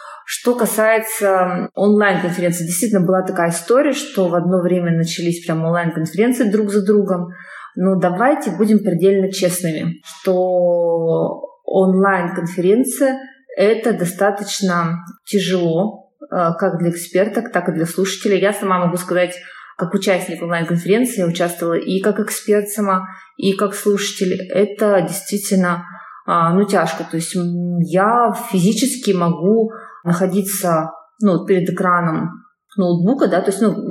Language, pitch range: Russian, 170-205 Hz